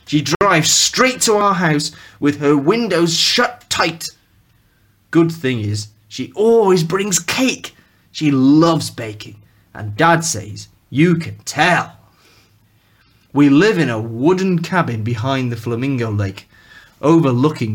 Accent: British